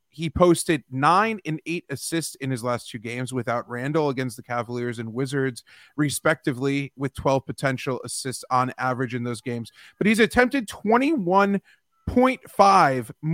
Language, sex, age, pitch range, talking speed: English, male, 30-49, 135-185 Hz, 145 wpm